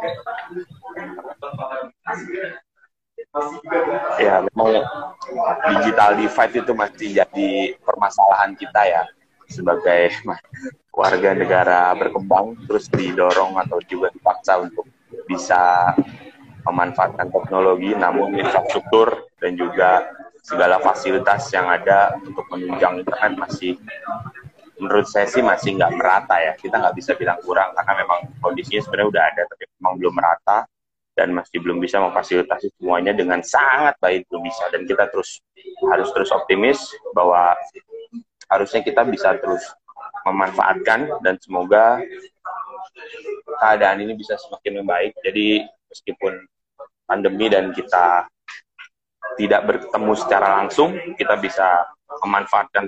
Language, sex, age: Indonesian, male, 20-39